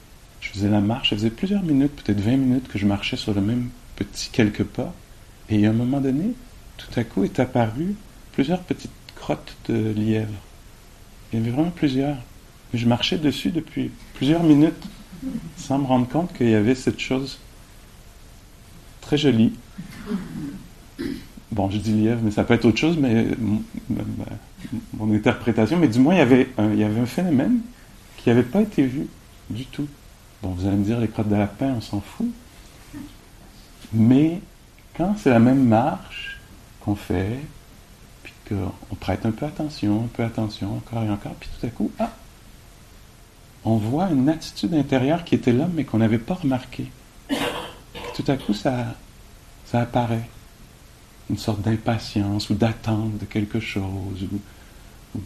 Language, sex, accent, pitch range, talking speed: English, male, French, 105-135 Hz, 170 wpm